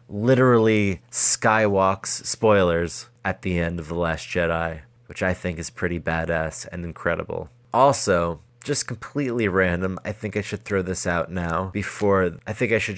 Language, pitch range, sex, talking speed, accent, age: English, 90-115 Hz, male, 160 wpm, American, 30-49